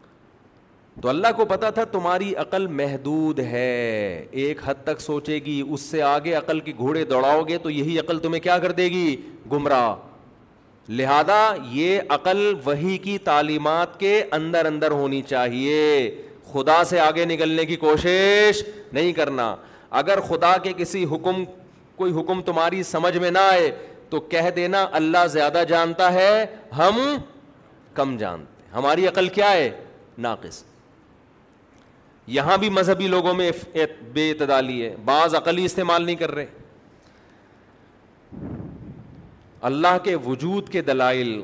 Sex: male